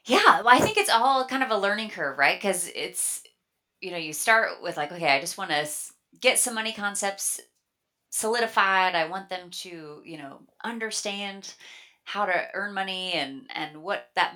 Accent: American